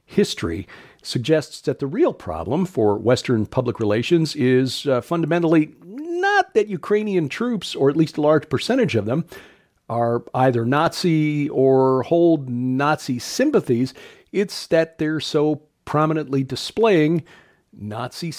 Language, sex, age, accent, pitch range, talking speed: English, male, 50-69, American, 120-155 Hz, 125 wpm